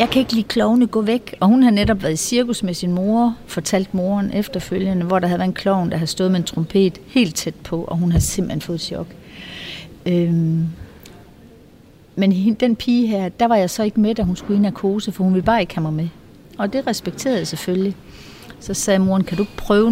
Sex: female